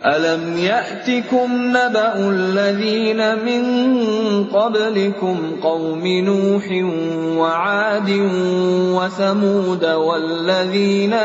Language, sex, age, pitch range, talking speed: Indonesian, male, 30-49, 195-245 Hz, 55 wpm